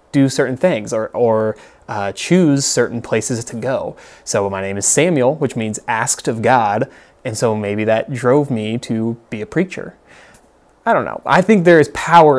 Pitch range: 110-130 Hz